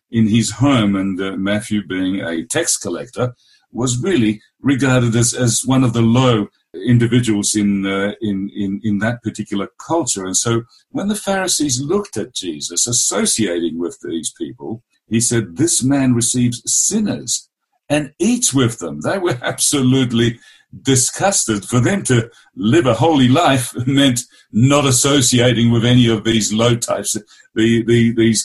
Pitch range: 105-125 Hz